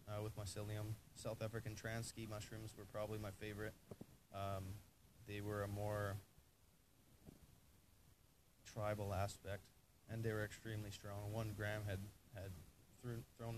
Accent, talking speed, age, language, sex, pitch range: American, 135 wpm, 20-39, English, male, 100-115 Hz